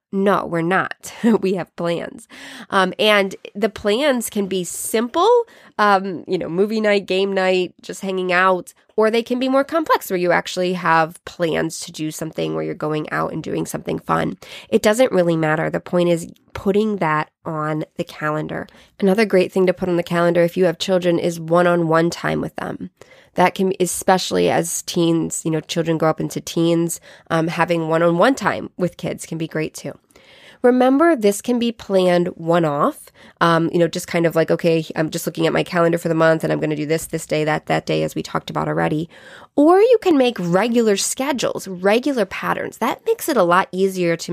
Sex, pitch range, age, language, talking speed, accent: female, 165-205 Hz, 20-39, English, 205 wpm, American